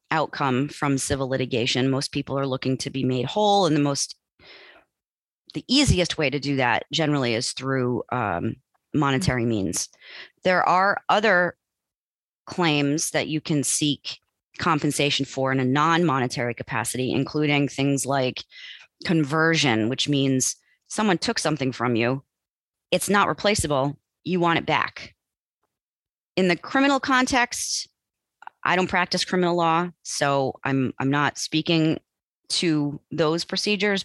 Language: English